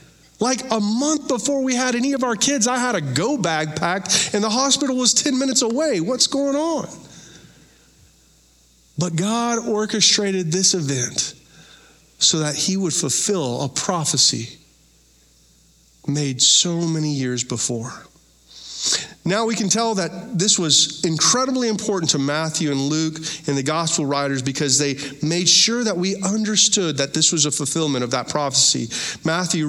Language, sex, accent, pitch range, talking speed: English, male, American, 145-225 Hz, 155 wpm